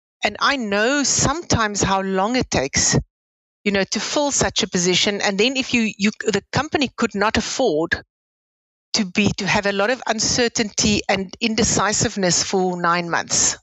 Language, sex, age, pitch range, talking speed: English, female, 60-79, 185-230 Hz, 165 wpm